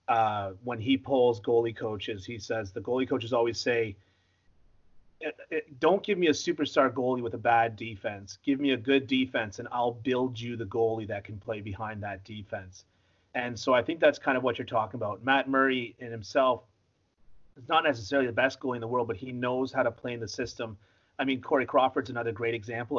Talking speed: 210 wpm